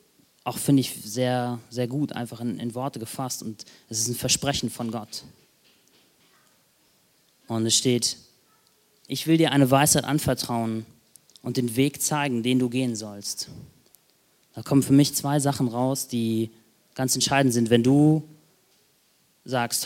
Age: 20-39